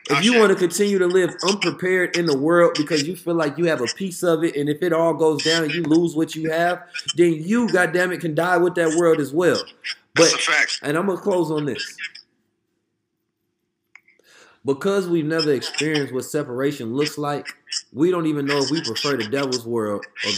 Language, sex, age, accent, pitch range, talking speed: English, male, 30-49, American, 150-195 Hz, 205 wpm